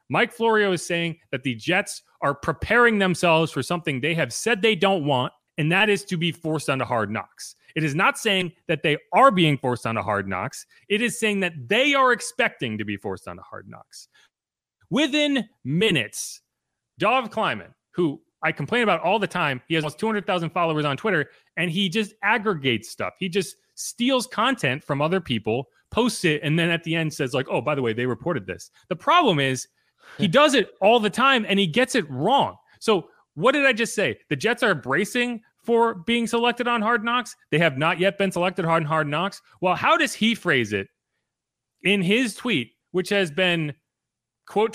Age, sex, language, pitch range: 30-49, male, English, 145-220 Hz